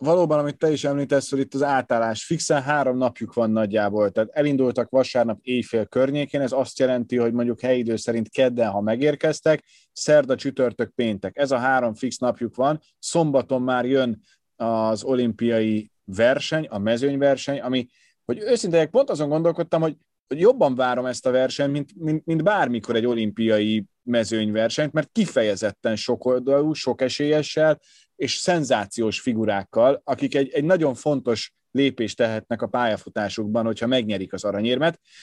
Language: Hungarian